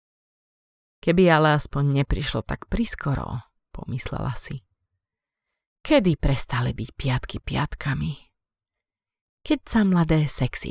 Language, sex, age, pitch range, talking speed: Slovak, female, 30-49, 115-165 Hz, 95 wpm